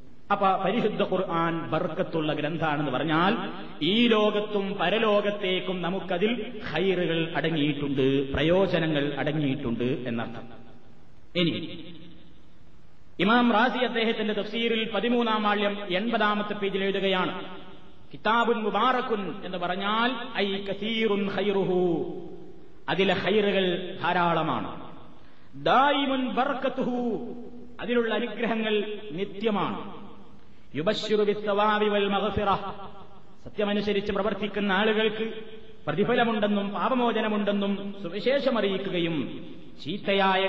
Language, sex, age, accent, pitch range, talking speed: Malayalam, male, 30-49, native, 175-220 Hz, 55 wpm